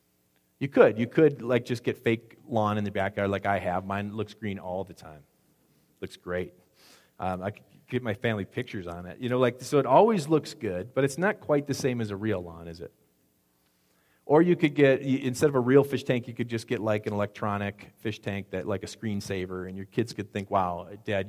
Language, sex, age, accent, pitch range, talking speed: English, male, 40-59, American, 95-135 Hz, 230 wpm